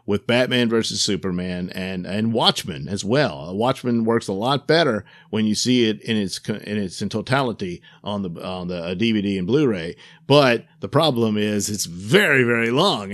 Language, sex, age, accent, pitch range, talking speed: English, male, 50-69, American, 110-140 Hz, 185 wpm